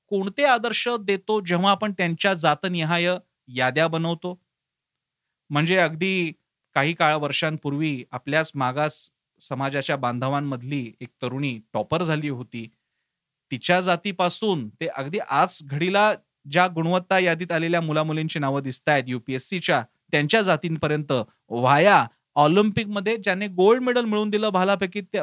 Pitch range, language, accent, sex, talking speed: 145-200 Hz, Marathi, native, male, 110 wpm